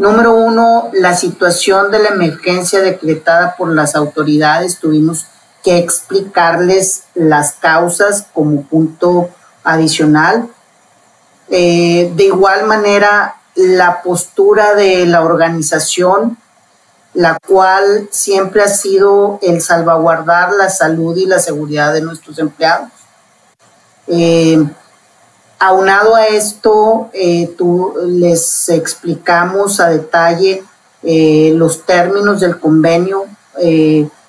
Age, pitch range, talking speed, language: 40-59, 160-195 Hz, 105 wpm, Spanish